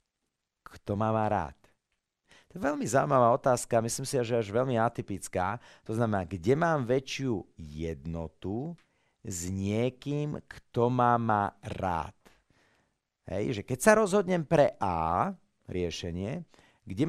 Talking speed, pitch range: 135 wpm, 90-120 Hz